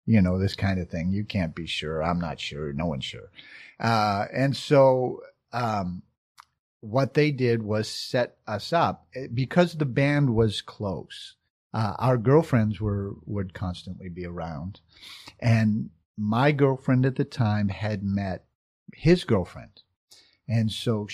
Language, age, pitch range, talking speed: English, 50-69, 105-130 Hz, 150 wpm